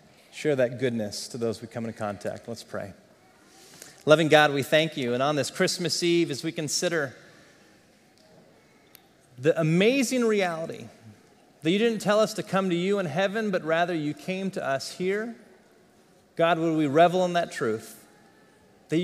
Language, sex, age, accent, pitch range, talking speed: English, male, 30-49, American, 125-170 Hz, 165 wpm